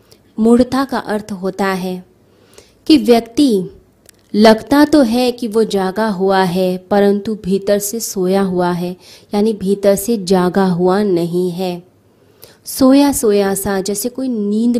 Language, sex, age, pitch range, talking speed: Hindi, female, 20-39, 190-230 Hz, 140 wpm